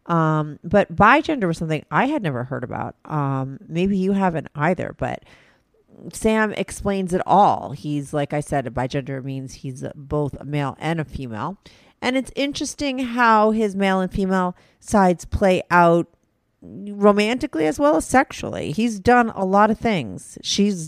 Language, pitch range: English, 145-195 Hz